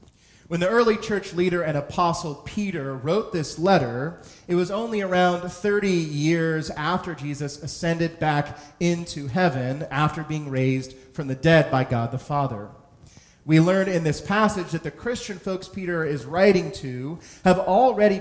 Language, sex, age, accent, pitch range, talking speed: English, male, 30-49, American, 140-180 Hz, 160 wpm